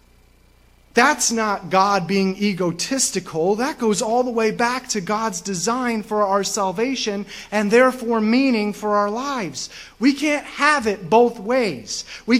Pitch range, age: 185-275 Hz, 30-49